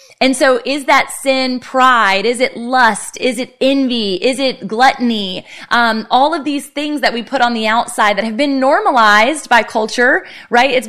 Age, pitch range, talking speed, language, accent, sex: 20-39, 200-255 Hz, 185 wpm, English, American, female